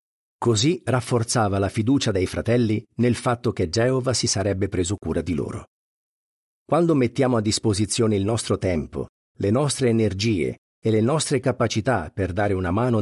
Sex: male